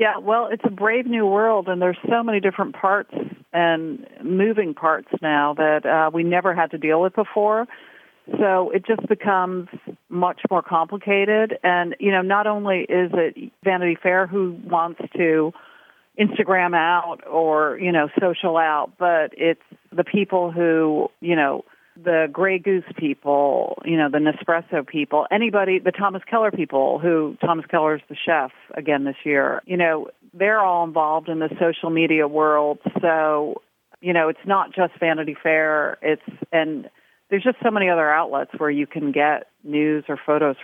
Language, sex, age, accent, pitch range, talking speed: English, female, 50-69, American, 155-195 Hz, 170 wpm